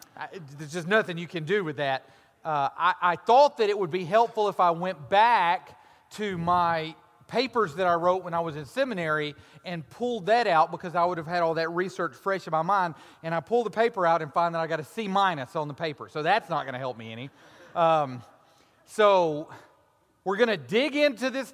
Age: 30-49